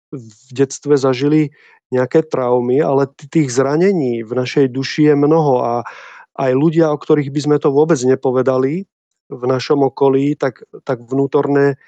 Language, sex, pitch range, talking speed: Slovak, male, 130-155 Hz, 150 wpm